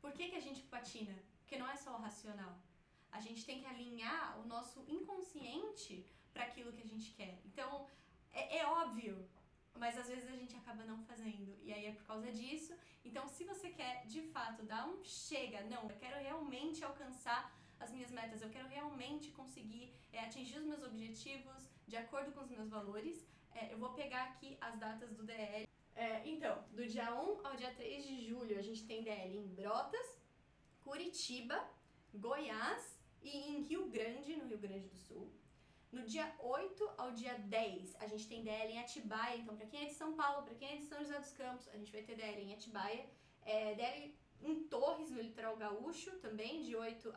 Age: 10-29